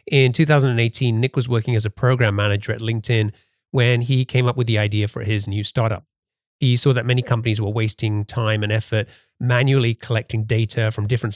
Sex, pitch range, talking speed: male, 110-125 Hz, 195 wpm